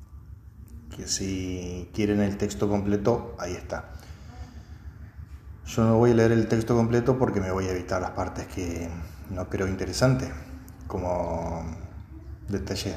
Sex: male